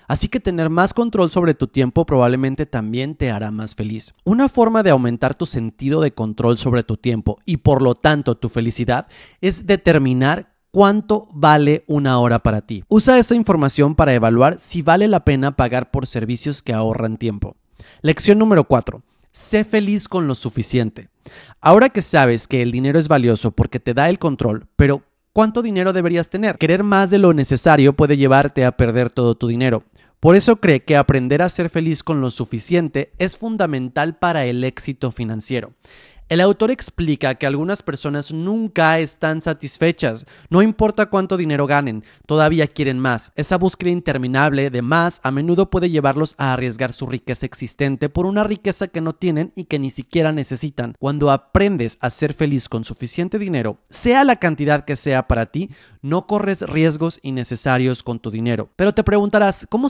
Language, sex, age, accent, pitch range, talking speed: Spanish, male, 30-49, Mexican, 125-175 Hz, 175 wpm